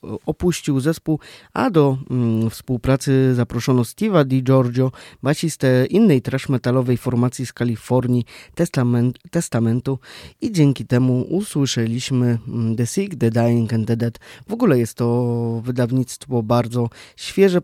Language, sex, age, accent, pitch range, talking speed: Polish, male, 20-39, native, 120-135 Hz, 125 wpm